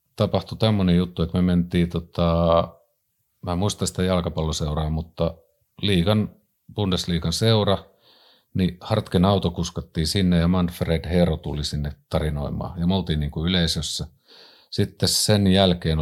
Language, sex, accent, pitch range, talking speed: Finnish, male, native, 85-100 Hz, 125 wpm